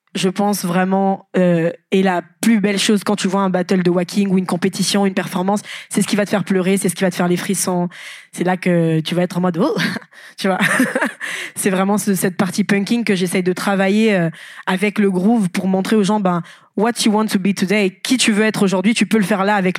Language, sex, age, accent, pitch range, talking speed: French, female, 20-39, French, 185-210 Hz, 260 wpm